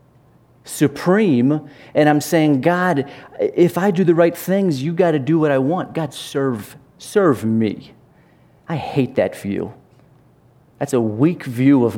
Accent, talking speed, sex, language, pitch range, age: American, 155 wpm, male, English, 120-155 Hz, 30-49